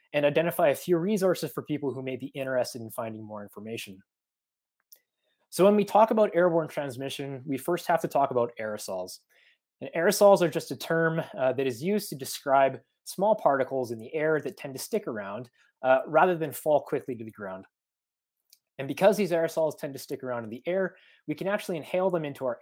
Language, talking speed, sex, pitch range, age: English, 205 wpm, male, 125-180 Hz, 20-39